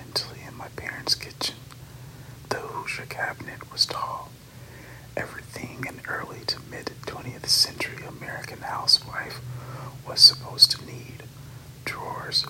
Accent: American